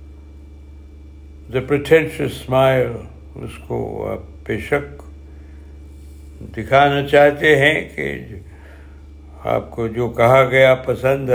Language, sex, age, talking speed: Urdu, male, 60-79, 90 wpm